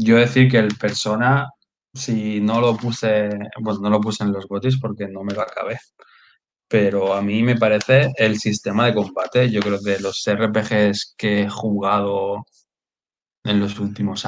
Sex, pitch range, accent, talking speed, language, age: male, 105-125 Hz, Spanish, 175 wpm, Spanish, 20-39